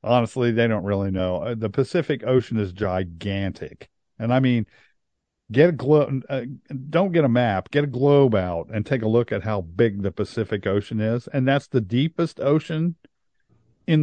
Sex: male